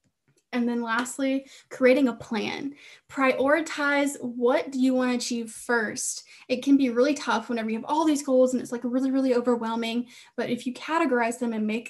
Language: English